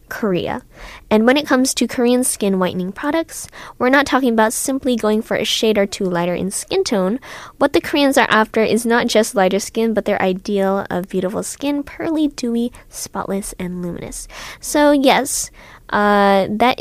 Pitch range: 195-245 Hz